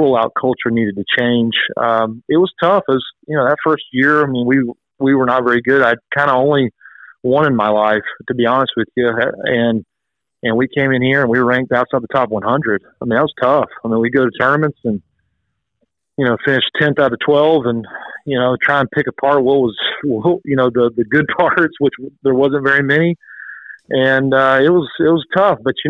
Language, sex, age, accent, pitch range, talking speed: English, male, 40-59, American, 120-145 Hz, 225 wpm